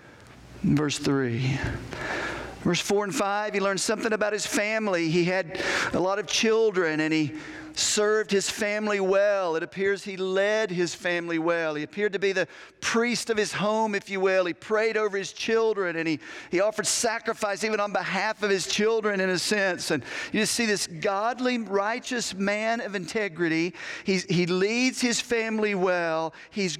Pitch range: 185-235 Hz